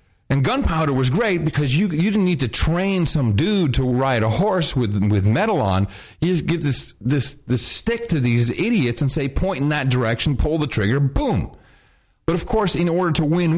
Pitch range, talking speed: 95-140 Hz, 210 wpm